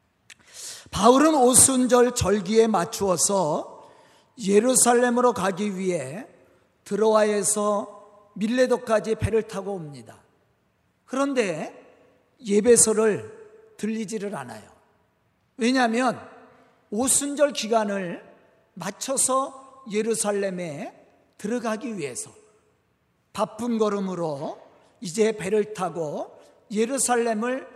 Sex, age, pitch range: male, 40-59, 210-275 Hz